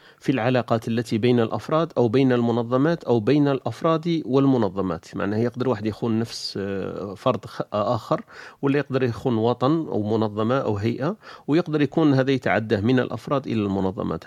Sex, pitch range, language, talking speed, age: male, 110-135 Hz, Arabic, 145 wpm, 40-59